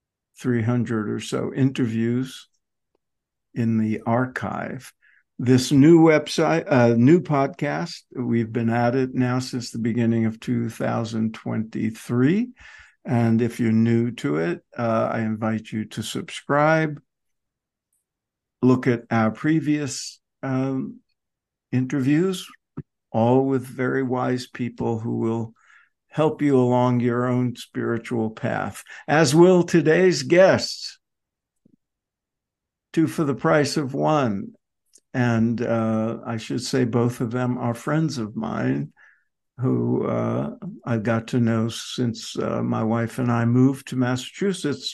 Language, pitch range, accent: English, 115-135 Hz, American